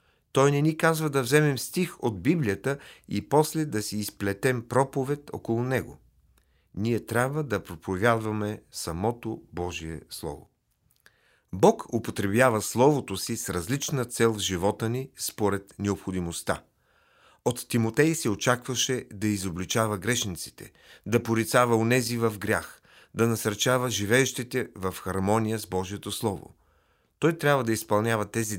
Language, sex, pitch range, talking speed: Bulgarian, male, 95-125 Hz, 130 wpm